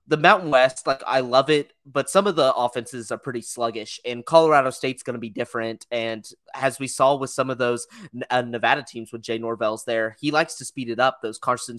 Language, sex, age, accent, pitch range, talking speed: English, male, 20-39, American, 115-145 Hz, 230 wpm